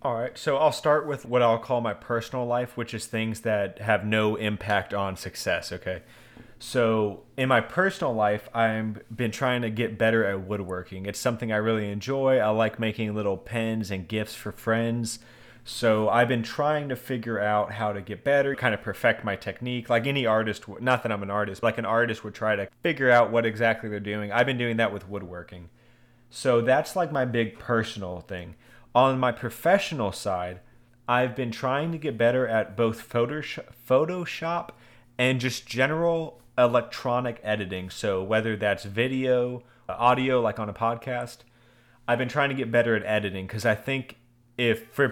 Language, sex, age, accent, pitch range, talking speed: English, male, 30-49, American, 105-125 Hz, 185 wpm